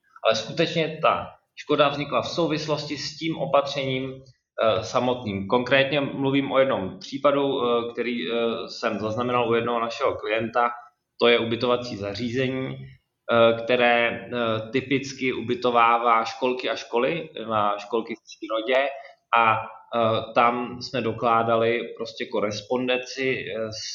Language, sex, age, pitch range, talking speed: Czech, male, 20-39, 110-130 Hz, 110 wpm